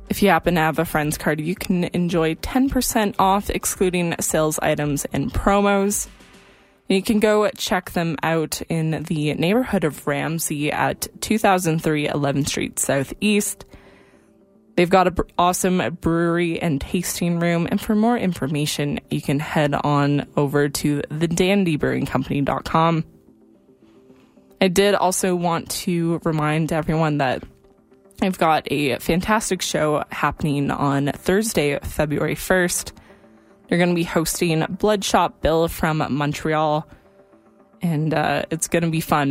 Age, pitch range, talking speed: 20-39, 150-185 Hz, 135 wpm